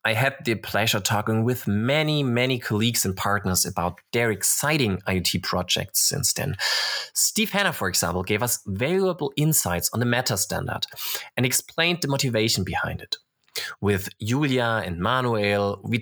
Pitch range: 100-140 Hz